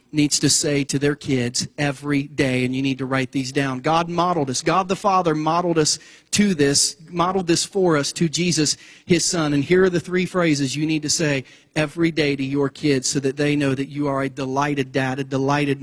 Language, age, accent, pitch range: English, 40-59, American, 135-165 Hz